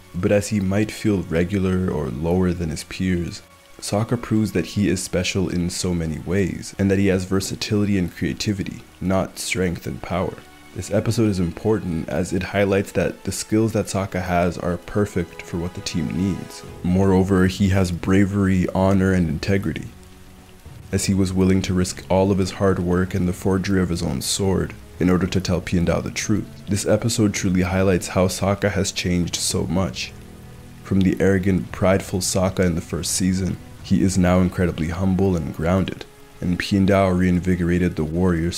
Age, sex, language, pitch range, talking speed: 20-39, male, English, 85-95 Hz, 180 wpm